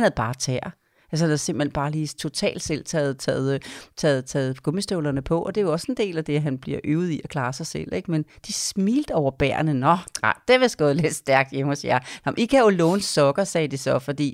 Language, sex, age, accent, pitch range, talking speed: Danish, female, 30-49, native, 150-195 Hz, 250 wpm